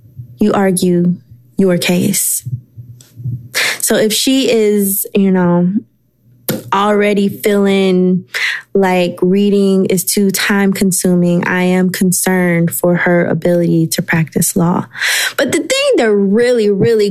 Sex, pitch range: female, 175-230 Hz